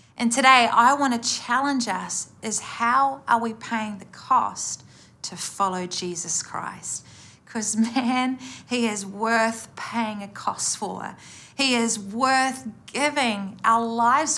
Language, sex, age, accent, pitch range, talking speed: English, female, 30-49, Australian, 210-255 Hz, 140 wpm